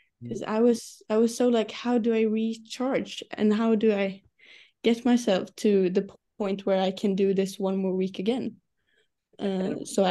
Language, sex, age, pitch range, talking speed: English, female, 10-29, 195-235 Hz, 185 wpm